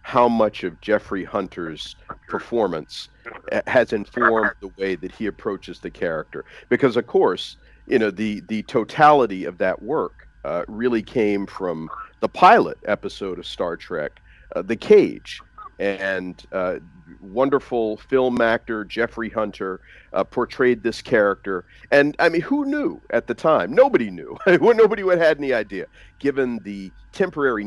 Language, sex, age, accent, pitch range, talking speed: English, male, 50-69, American, 95-120 Hz, 145 wpm